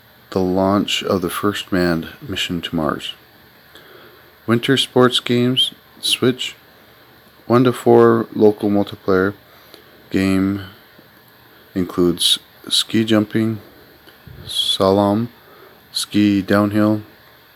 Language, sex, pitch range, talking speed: English, male, 95-115 Hz, 85 wpm